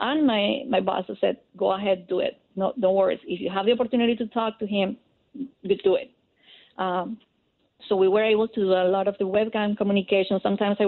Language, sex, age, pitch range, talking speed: English, female, 30-49, 190-235 Hz, 210 wpm